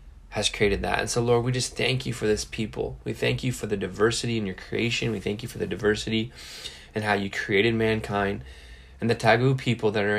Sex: male